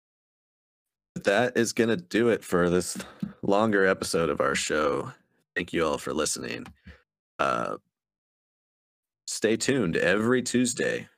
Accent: American